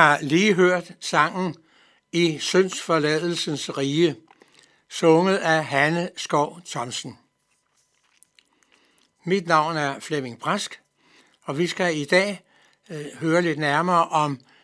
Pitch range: 145-180 Hz